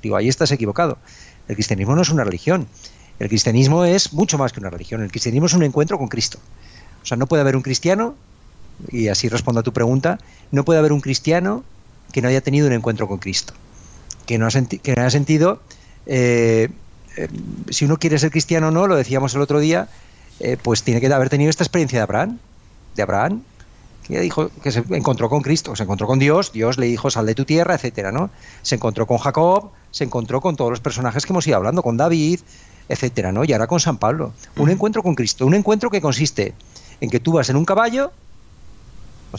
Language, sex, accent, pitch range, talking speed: Spanish, male, Spanish, 115-155 Hz, 220 wpm